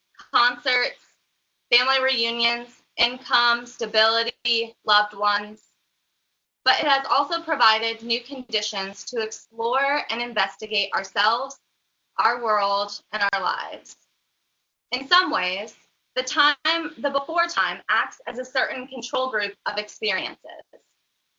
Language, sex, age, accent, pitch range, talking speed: English, female, 20-39, American, 210-285 Hz, 110 wpm